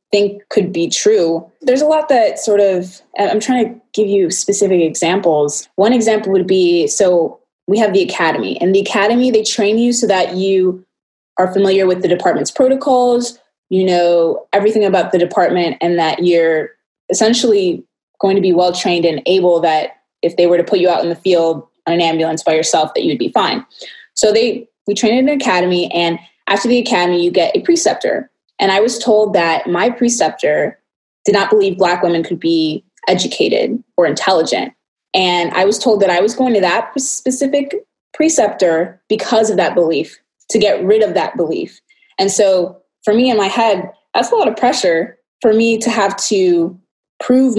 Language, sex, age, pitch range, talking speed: English, female, 20-39, 175-225 Hz, 190 wpm